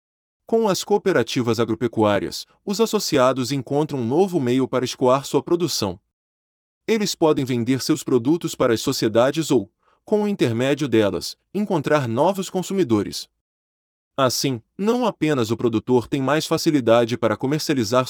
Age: 20-39